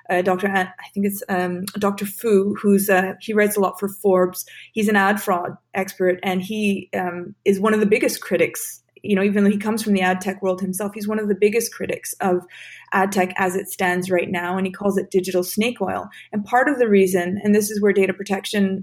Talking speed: 235 wpm